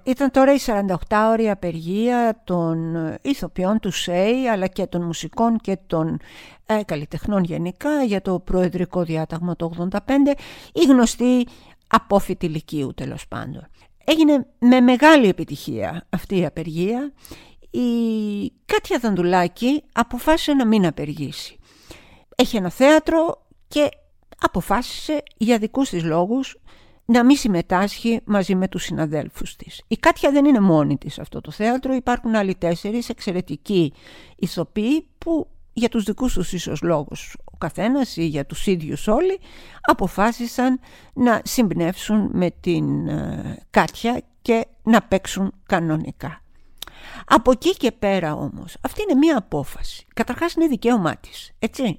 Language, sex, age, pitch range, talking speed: Greek, female, 50-69, 175-250 Hz, 130 wpm